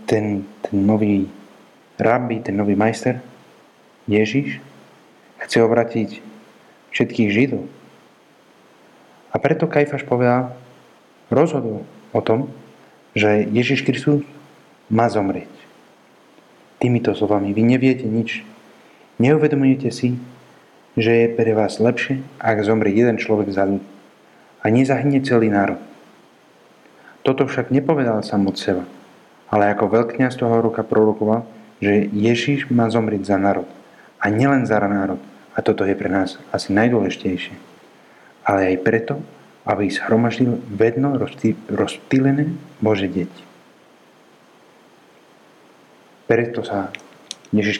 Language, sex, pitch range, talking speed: Czech, male, 105-125 Hz, 110 wpm